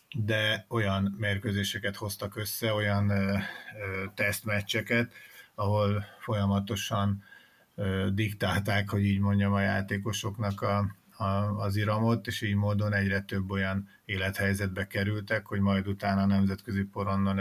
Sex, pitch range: male, 100-110 Hz